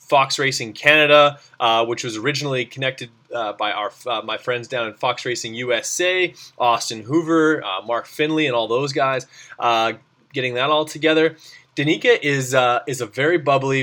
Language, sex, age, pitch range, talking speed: English, male, 20-39, 115-150 Hz, 175 wpm